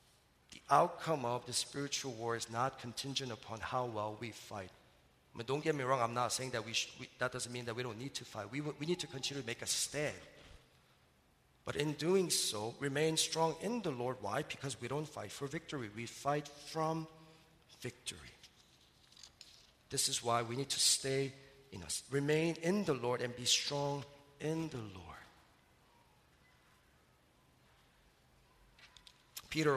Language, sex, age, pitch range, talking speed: English, male, 40-59, 120-160 Hz, 170 wpm